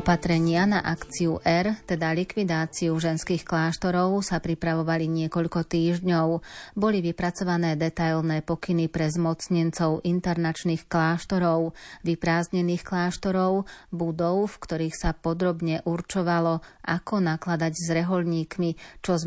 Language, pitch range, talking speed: Slovak, 165-180 Hz, 105 wpm